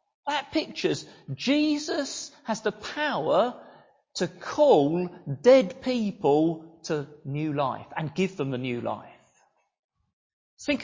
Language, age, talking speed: English, 40-59, 110 wpm